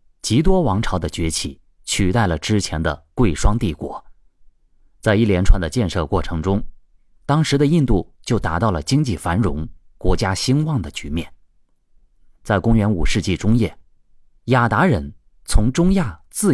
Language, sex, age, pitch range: Chinese, male, 30-49, 75-120 Hz